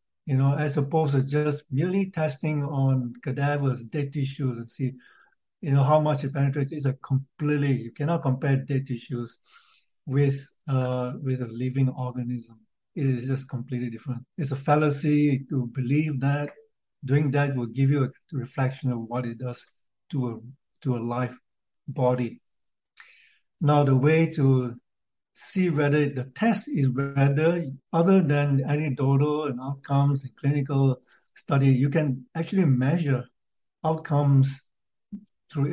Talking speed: 145 wpm